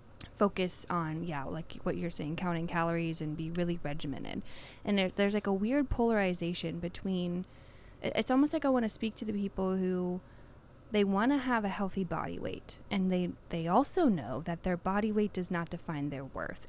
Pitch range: 170-215 Hz